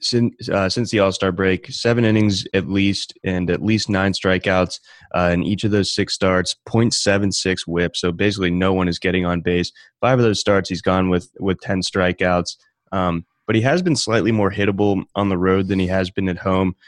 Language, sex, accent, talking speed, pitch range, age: English, male, American, 210 wpm, 90-100 Hz, 20-39